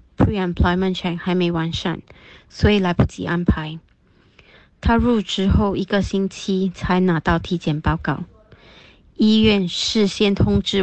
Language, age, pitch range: Chinese, 30-49, 175-215 Hz